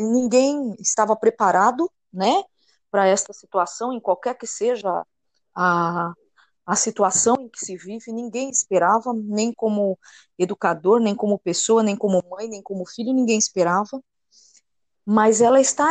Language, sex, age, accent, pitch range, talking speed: Portuguese, female, 20-39, Brazilian, 195-245 Hz, 140 wpm